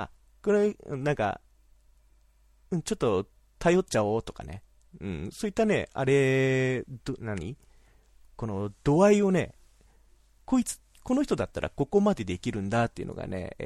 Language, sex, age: Japanese, male, 30-49